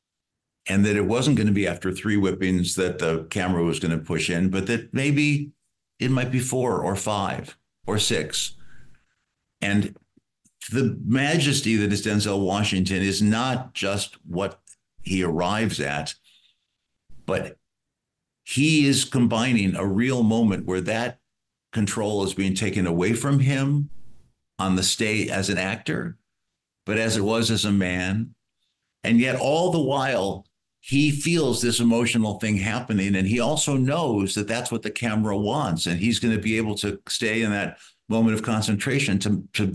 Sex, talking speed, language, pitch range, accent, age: male, 165 wpm, English, 100-125 Hz, American, 50-69